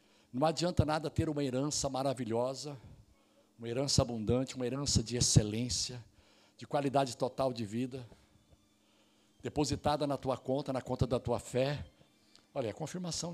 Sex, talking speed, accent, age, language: male, 140 wpm, Brazilian, 60-79, Portuguese